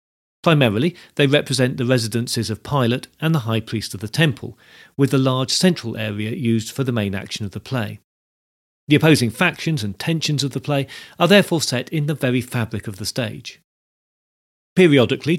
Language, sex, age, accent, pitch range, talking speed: English, male, 40-59, British, 115-150 Hz, 180 wpm